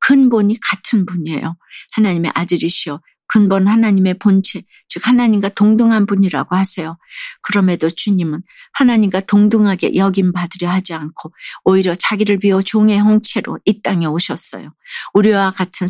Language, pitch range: Korean, 175-210 Hz